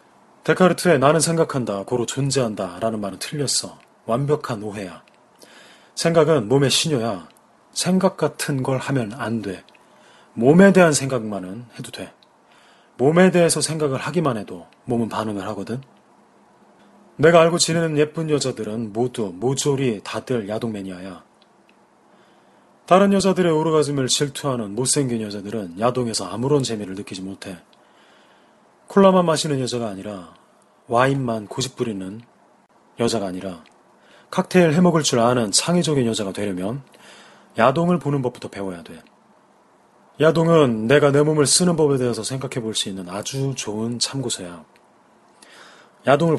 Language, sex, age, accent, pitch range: Korean, male, 30-49, native, 110-150 Hz